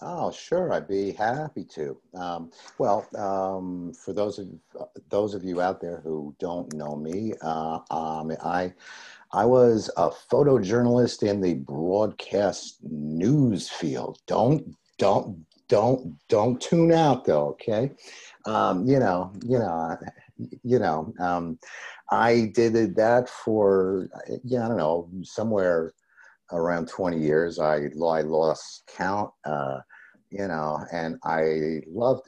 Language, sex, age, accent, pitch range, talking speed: English, male, 50-69, American, 80-115 Hz, 135 wpm